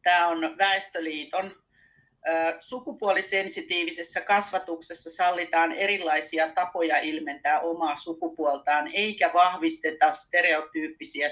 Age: 40-59